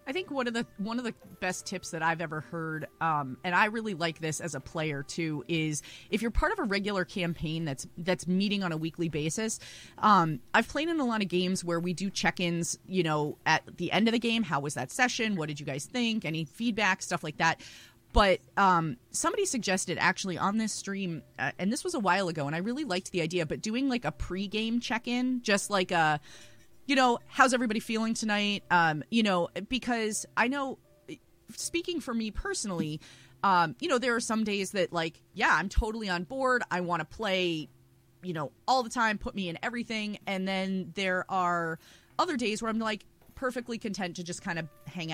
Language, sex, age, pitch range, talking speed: English, female, 30-49, 165-225 Hz, 215 wpm